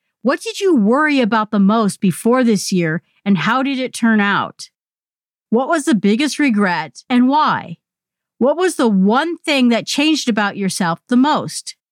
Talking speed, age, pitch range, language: 170 wpm, 50-69, 195-270 Hz, English